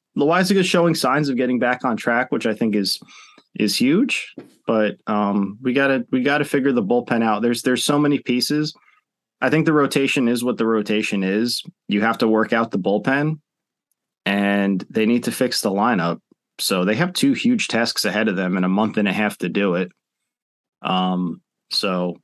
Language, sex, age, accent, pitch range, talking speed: English, male, 20-39, American, 100-135 Hz, 195 wpm